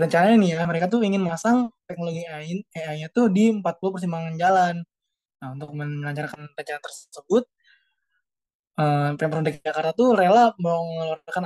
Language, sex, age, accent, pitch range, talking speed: Indonesian, male, 20-39, native, 165-225 Hz, 135 wpm